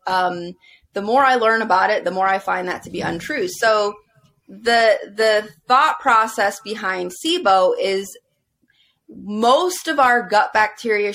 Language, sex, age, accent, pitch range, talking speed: English, female, 30-49, American, 185-245 Hz, 150 wpm